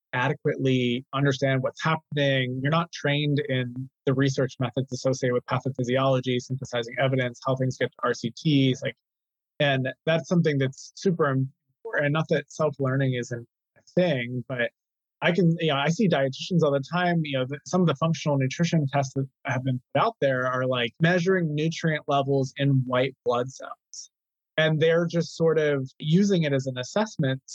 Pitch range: 130-155 Hz